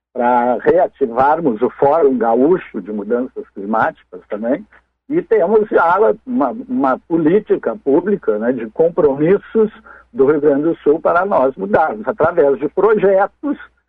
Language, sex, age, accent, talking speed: Portuguese, male, 60-79, Brazilian, 125 wpm